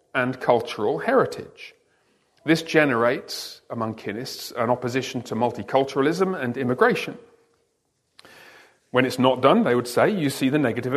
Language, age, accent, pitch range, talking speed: English, 40-59, British, 125-205 Hz, 130 wpm